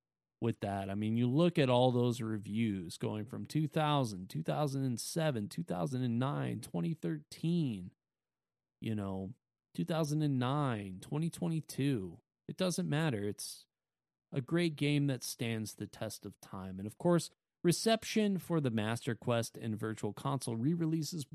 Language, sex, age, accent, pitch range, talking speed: English, male, 30-49, American, 110-160 Hz, 125 wpm